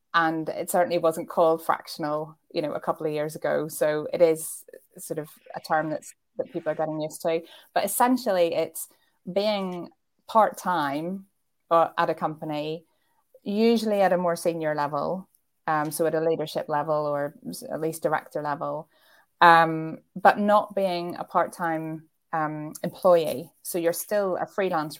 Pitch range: 155-175 Hz